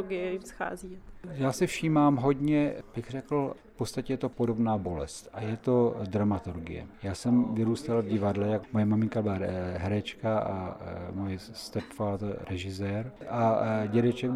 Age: 50-69